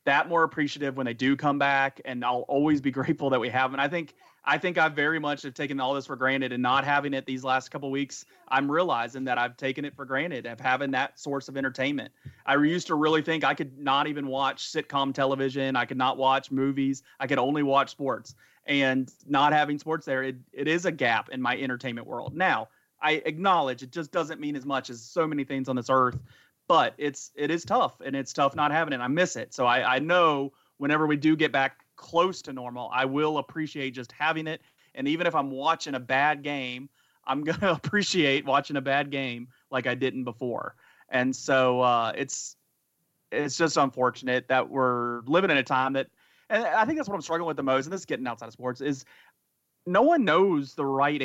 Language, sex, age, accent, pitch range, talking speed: English, male, 30-49, American, 130-150 Hz, 225 wpm